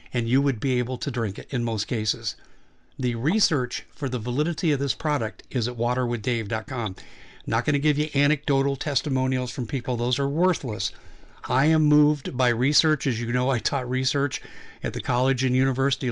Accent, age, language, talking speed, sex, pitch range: American, 50-69, English, 180 wpm, male, 120-145 Hz